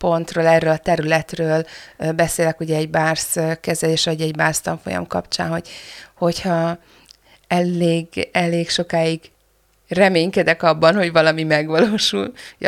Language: Hungarian